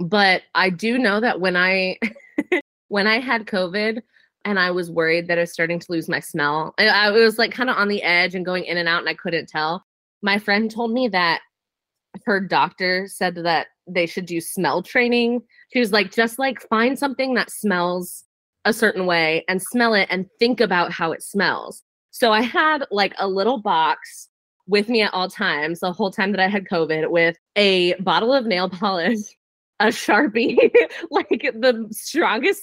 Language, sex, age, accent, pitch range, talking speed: English, female, 20-39, American, 185-285 Hz, 195 wpm